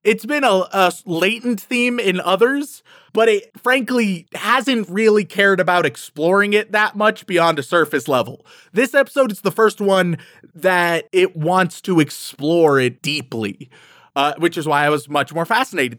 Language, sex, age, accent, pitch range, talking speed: English, male, 20-39, American, 150-205 Hz, 170 wpm